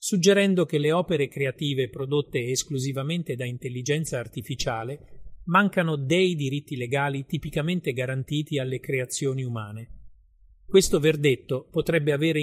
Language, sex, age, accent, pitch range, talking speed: Italian, male, 40-59, native, 125-155 Hz, 110 wpm